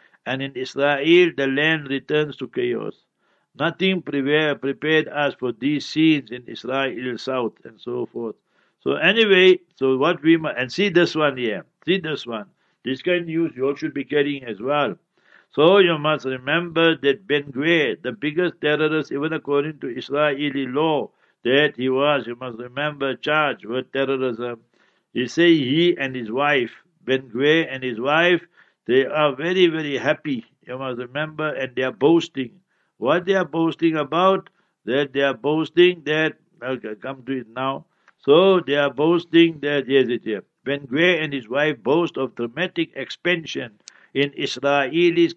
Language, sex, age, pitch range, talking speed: English, male, 60-79, 135-170 Hz, 165 wpm